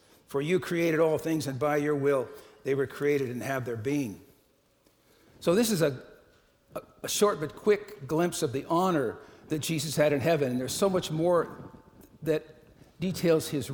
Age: 50-69